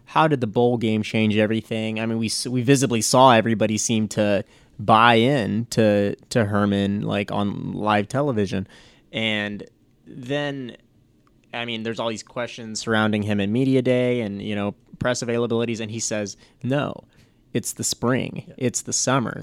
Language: English